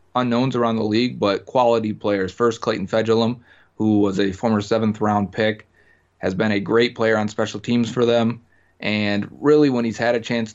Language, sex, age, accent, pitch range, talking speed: English, male, 30-49, American, 100-125 Hz, 195 wpm